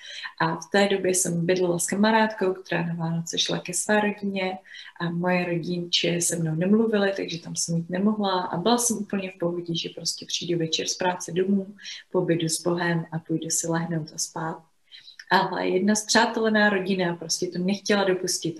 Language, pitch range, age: Czech, 170-185 Hz, 30-49